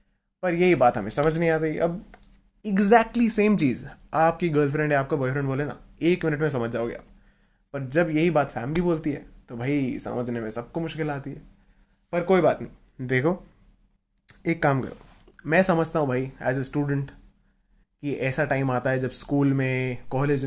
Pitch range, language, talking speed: 130-175 Hz, Hindi, 185 wpm